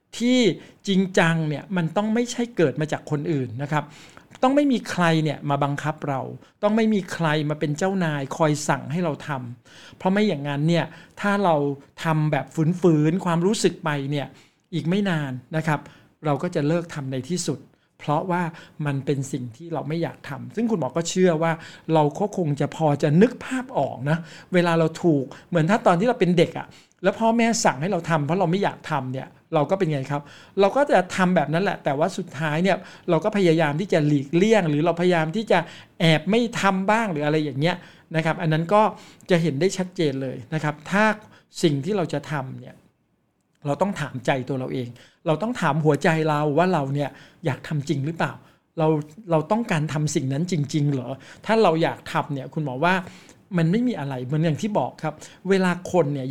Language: Thai